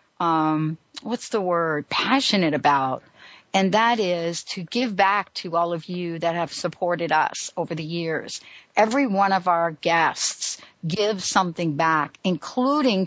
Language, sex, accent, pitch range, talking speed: English, female, American, 165-220 Hz, 145 wpm